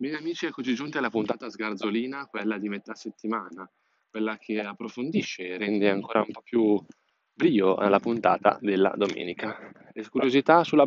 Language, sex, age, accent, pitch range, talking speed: Italian, male, 20-39, native, 100-125 Hz, 155 wpm